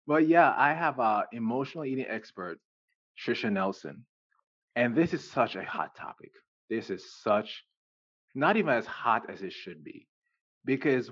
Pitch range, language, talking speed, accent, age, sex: 110-155 Hz, English, 155 wpm, American, 20-39, male